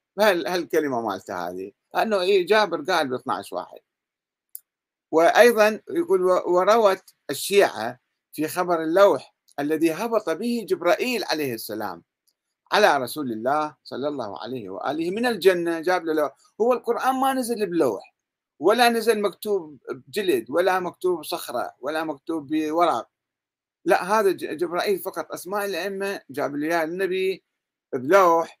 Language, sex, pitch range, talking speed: Arabic, male, 155-230 Hz, 120 wpm